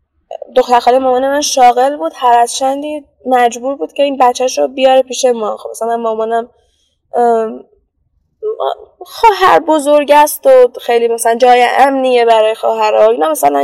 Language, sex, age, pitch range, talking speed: Persian, female, 10-29, 225-290 Hz, 135 wpm